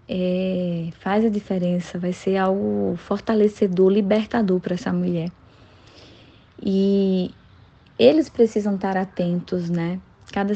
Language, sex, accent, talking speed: Portuguese, female, Brazilian, 110 wpm